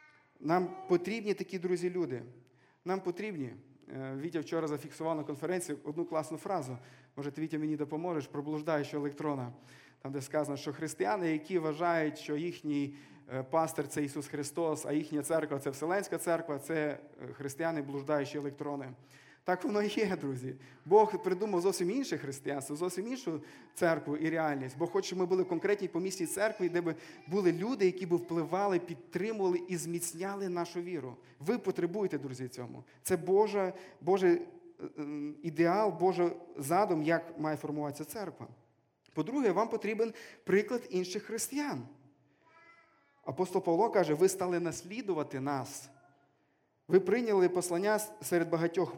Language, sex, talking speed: Ukrainian, male, 140 wpm